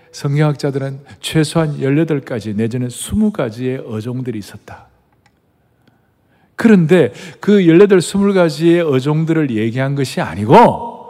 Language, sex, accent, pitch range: Korean, male, native, 130-195 Hz